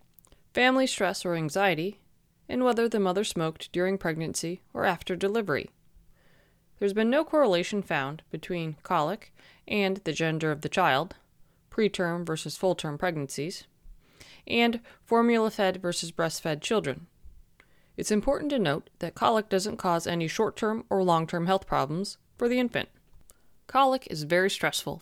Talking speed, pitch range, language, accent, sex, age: 145 wpm, 160-205 Hz, English, American, female, 30-49